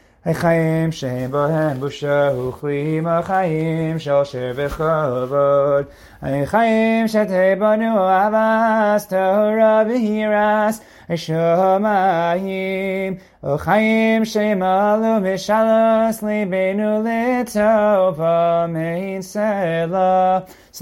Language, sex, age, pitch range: English, male, 30-49, 125-180 Hz